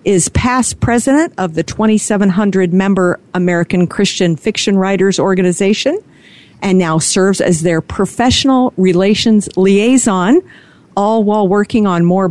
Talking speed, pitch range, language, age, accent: 115 wpm, 185-235 Hz, English, 50-69, American